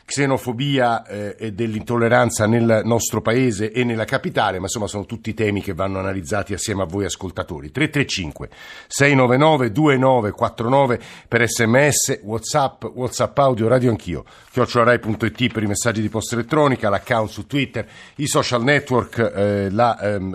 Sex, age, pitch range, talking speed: male, 50-69, 105-135 Hz, 130 wpm